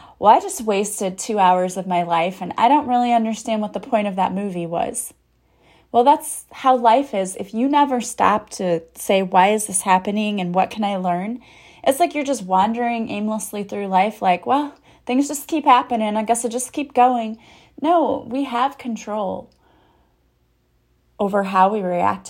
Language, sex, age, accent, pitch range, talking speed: English, female, 30-49, American, 190-245 Hz, 185 wpm